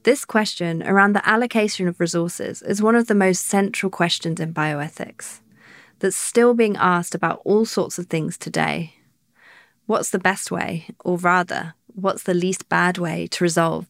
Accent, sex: British, female